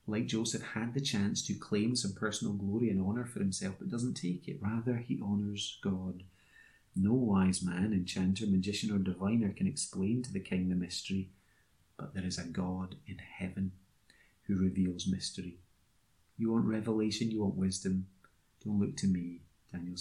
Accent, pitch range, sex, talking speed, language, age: British, 90-105 Hz, male, 170 wpm, English, 30-49